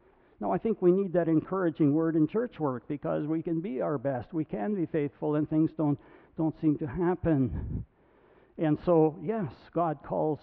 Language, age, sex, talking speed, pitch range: English, 60-79, male, 190 wpm, 130-180 Hz